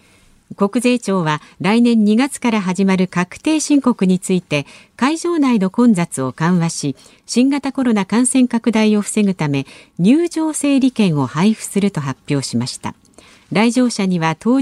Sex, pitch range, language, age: female, 175-250 Hz, Japanese, 50-69